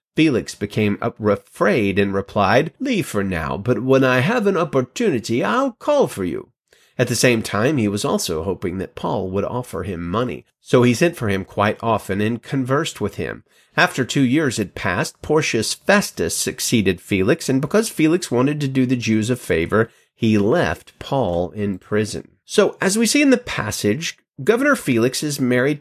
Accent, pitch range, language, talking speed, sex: American, 105-165 Hz, English, 180 wpm, male